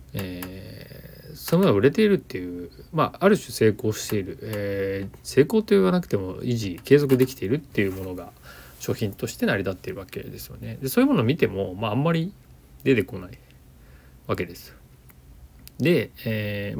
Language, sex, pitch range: Japanese, male, 95-135 Hz